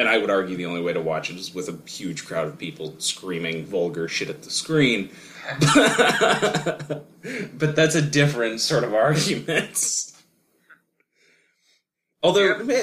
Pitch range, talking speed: 95-145 Hz, 145 wpm